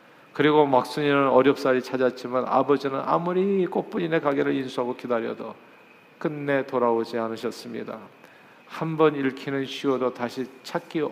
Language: Korean